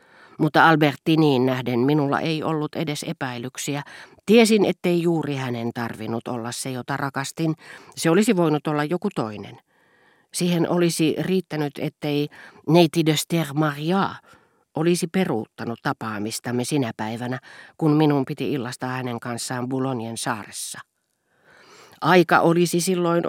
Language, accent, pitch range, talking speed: Finnish, native, 125-165 Hz, 120 wpm